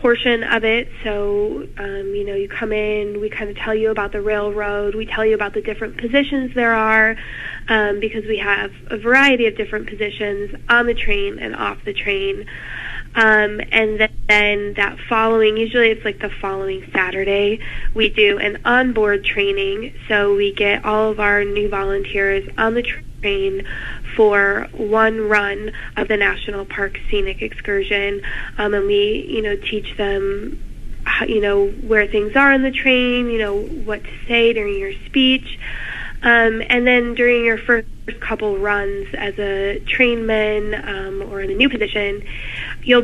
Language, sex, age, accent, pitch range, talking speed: English, female, 10-29, American, 205-240 Hz, 165 wpm